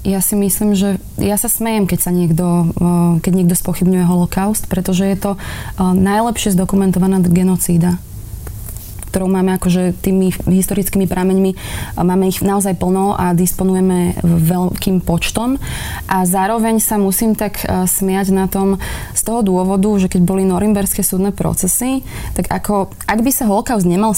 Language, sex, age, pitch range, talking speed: Slovak, female, 20-39, 175-200 Hz, 145 wpm